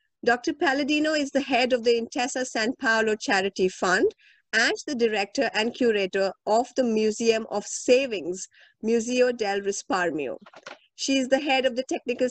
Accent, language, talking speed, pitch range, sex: Indian, English, 155 wpm, 220-275 Hz, female